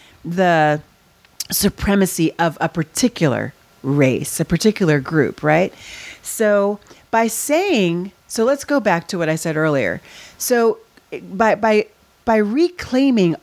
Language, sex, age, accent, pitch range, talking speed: English, female, 40-59, American, 165-215 Hz, 120 wpm